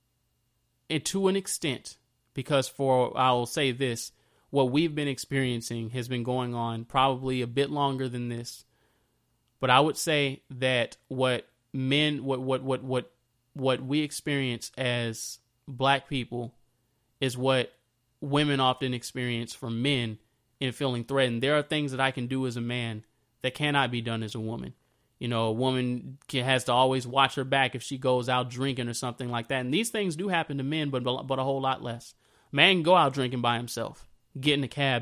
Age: 20-39